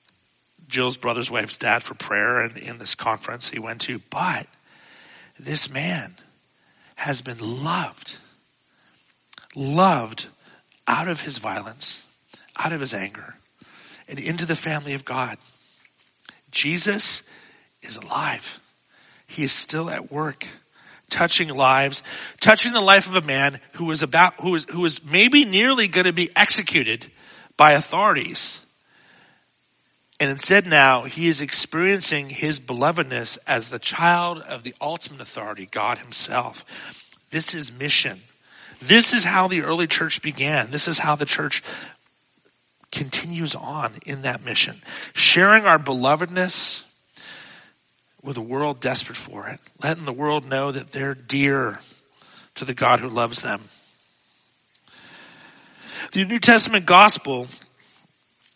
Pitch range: 130-175 Hz